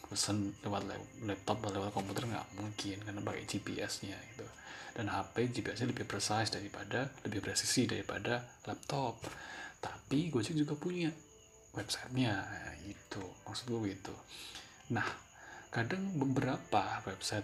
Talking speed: 120 wpm